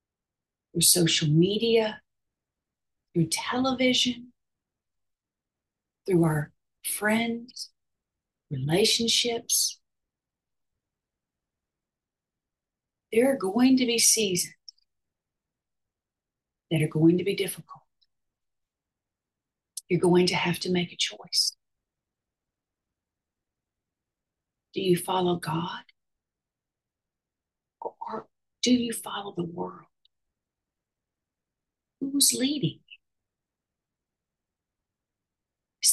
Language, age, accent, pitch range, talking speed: English, 50-69, American, 155-220 Hz, 70 wpm